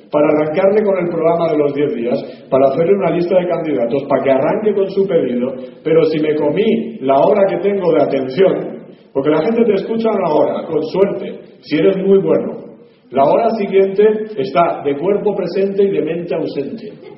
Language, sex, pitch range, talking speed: Spanish, male, 150-215 Hz, 195 wpm